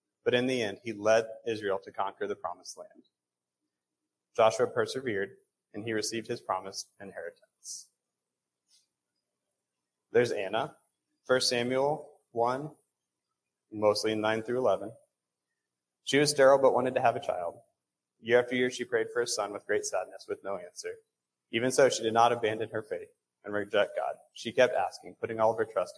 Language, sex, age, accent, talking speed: English, male, 30-49, American, 165 wpm